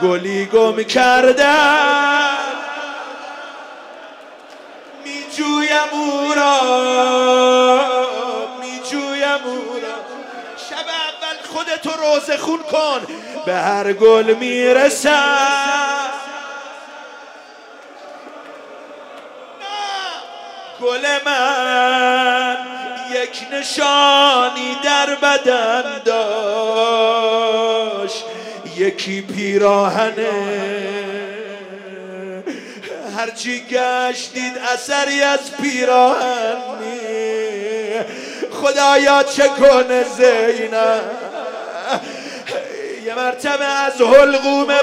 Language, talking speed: Persian, 50 wpm